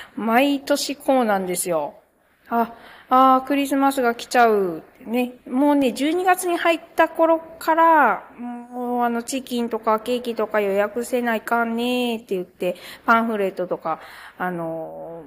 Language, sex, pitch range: Japanese, female, 185-255 Hz